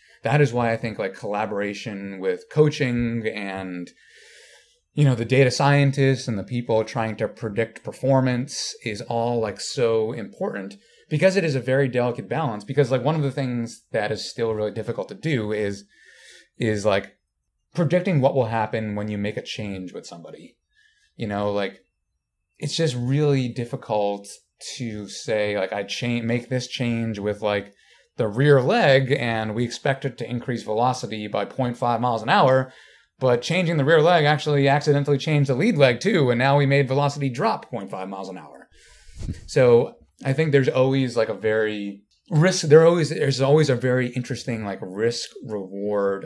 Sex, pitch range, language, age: male, 105-135 Hz, English, 30-49